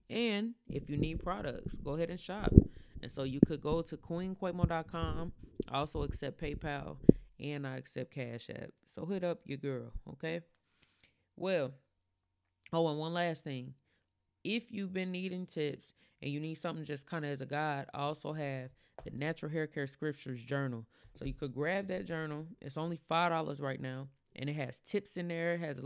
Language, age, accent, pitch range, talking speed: English, 20-39, American, 135-155 Hz, 190 wpm